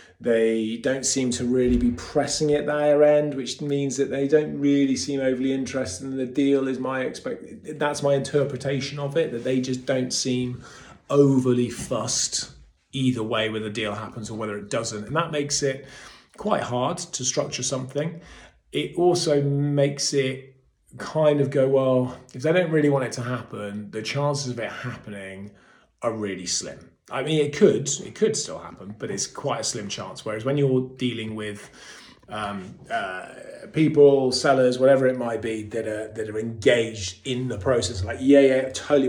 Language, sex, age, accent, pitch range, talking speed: English, male, 30-49, British, 115-140 Hz, 185 wpm